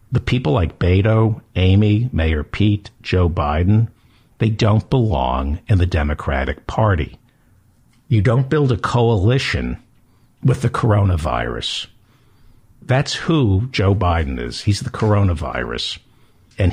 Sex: male